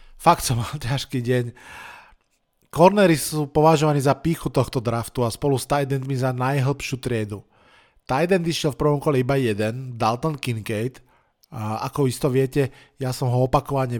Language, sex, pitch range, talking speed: Slovak, male, 125-155 Hz, 150 wpm